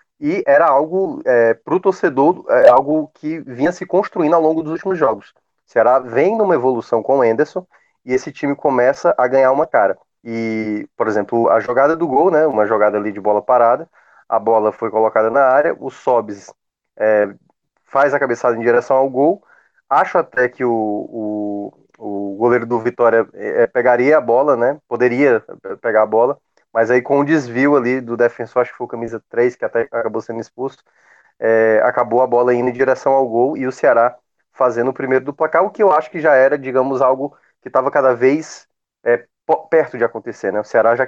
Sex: male